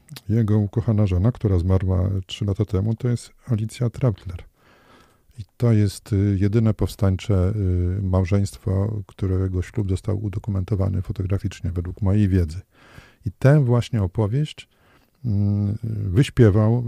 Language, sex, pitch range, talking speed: Polish, male, 95-110 Hz, 110 wpm